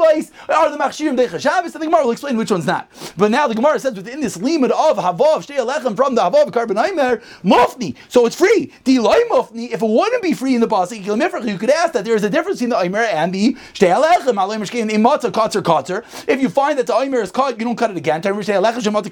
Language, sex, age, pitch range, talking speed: English, male, 30-49, 225-295 Hz, 240 wpm